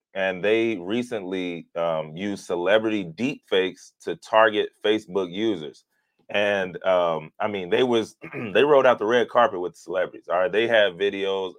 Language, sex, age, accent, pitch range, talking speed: English, male, 30-49, American, 95-115 Hz, 155 wpm